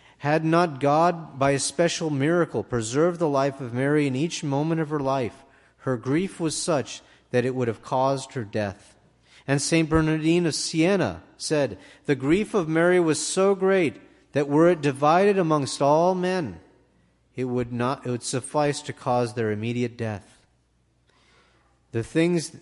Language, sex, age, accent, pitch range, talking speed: English, male, 40-59, American, 120-155 Hz, 160 wpm